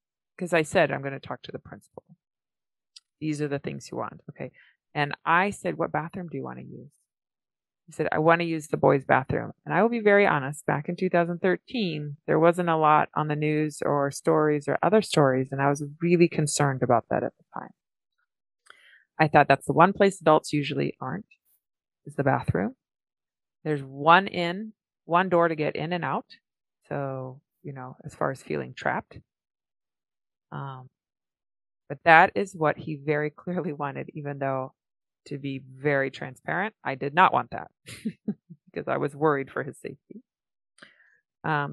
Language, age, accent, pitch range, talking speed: English, 30-49, American, 140-175 Hz, 180 wpm